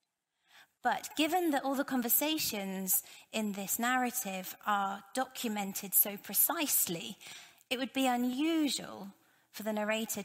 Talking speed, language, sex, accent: 115 wpm, English, female, British